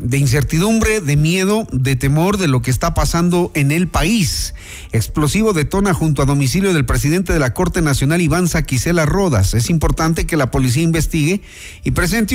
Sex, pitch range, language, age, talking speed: male, 130-175 Hz, Spanish, 40-59, 175 wpm